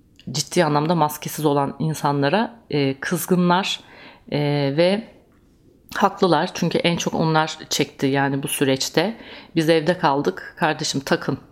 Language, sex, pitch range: Turkish, female, 145-185 Hz